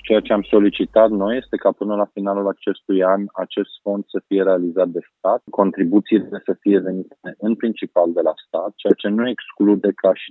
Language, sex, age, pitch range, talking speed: Romanian, male, 30-49, 95-110 Hz, 190 wpm